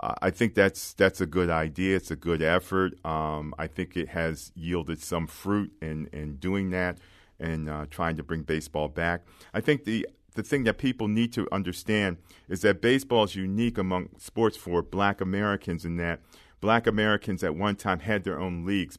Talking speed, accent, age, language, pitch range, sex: 195 wpm, American, 40-59, English, 85-105 Hz, male